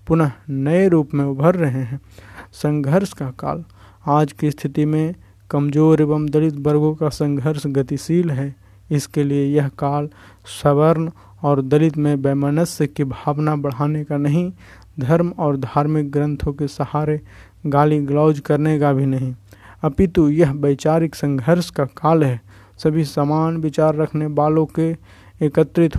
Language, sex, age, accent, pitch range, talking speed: Hindi, male, 50-69, native, 140-160 Hz, 140 wpm